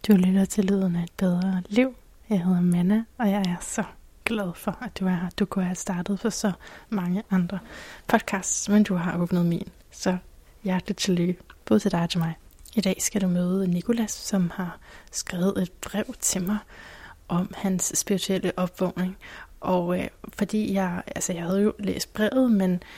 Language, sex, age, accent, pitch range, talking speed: Danish, female, 20-39, native, 180-210 Hz, 190 wpm